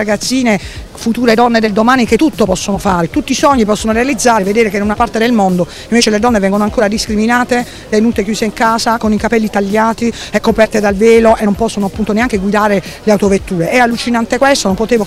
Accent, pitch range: native, 195-230 Hz